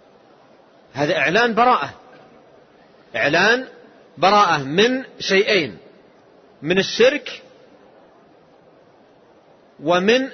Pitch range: 190-245 Hz